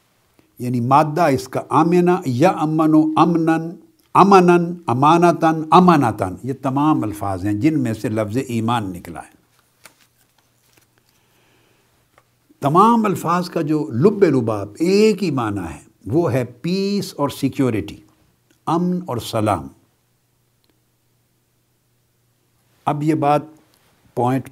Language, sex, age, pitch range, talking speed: Urdu, male, 60-79, 120-170 Hz, 105 wpm